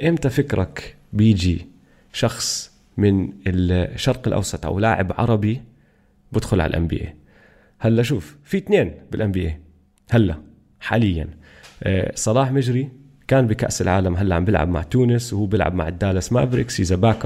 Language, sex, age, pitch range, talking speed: Arabic, male, 30-49, 95-125 Hz, 135 wpm